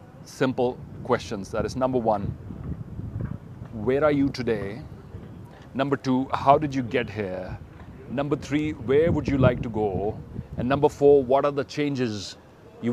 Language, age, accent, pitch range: English, 40-59, Indian, 110-140 Hz